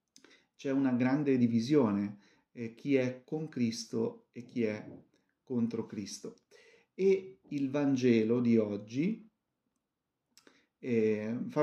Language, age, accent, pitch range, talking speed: Italian, 40-59, native, 110-130 Hz, 110 wpm